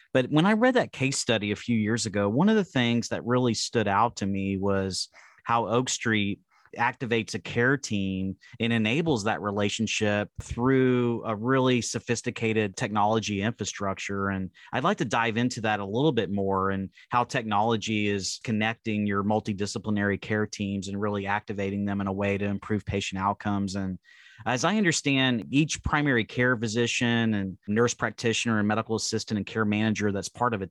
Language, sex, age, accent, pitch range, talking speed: English, male, 30-49, American, 100-120 Hz, 180 wpm